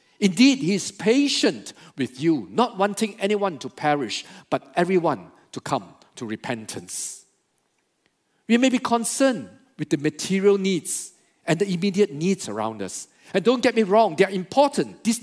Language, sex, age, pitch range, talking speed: English, male, 50-69, 150-225 Hz, 160 wpm